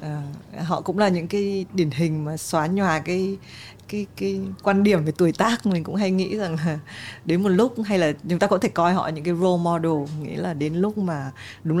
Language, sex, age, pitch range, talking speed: Vietnamese, female, 20-39, 165-210 Hz, 235 wpm